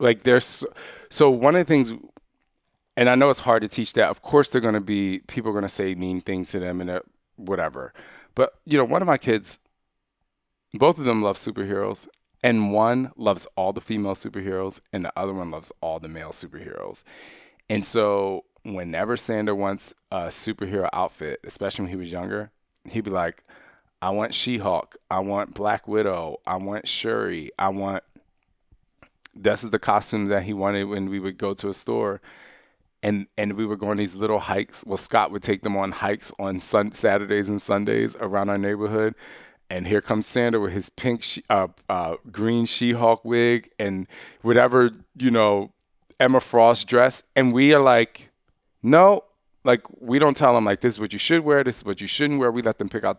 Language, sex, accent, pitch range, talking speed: English, male, American, 100-120 Hz, 195 wpm